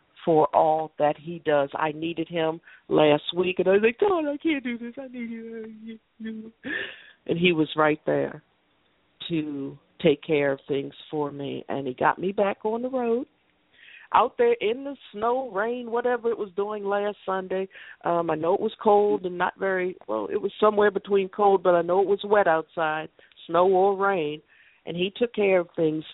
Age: 50-69